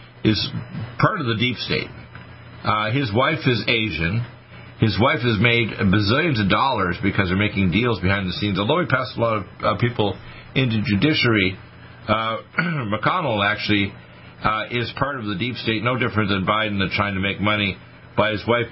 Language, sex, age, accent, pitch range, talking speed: English, male, 50-69, American, 100-120 Hz, 180 wpm